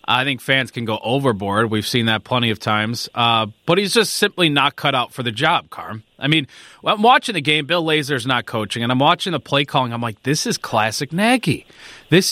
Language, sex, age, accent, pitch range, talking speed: English, male, 30-49, American, 130-175 Hz, 230 wpm